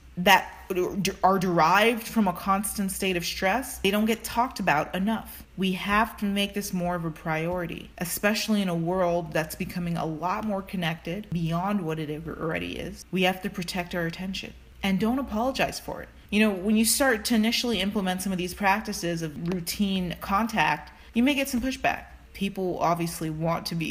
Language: English